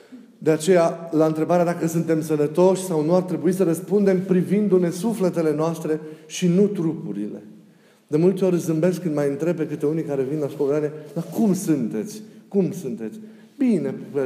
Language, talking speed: Romanian, 160 wpm